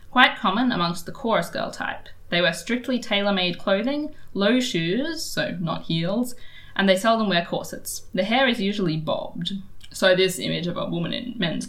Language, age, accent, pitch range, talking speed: English, 10-29, Australian, 170-220 Hz, 180 wpm